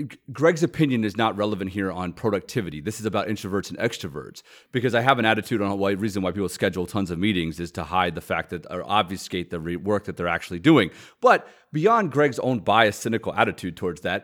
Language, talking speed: English, 215 wpm